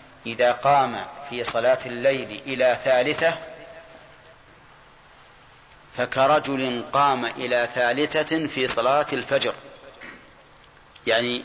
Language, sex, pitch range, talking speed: Arabic, male, 125-145 Hz, 80 wpm